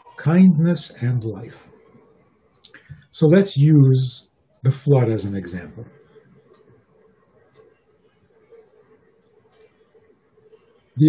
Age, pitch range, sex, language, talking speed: 60-79, 115-155 Hz, male, English, 65 wpm